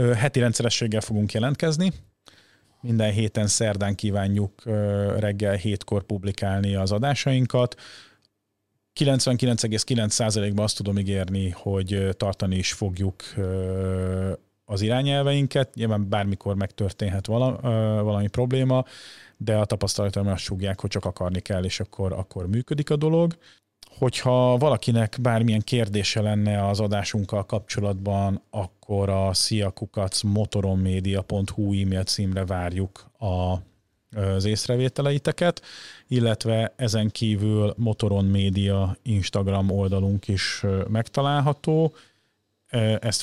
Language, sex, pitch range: Hungarian, male, 100-120 Hz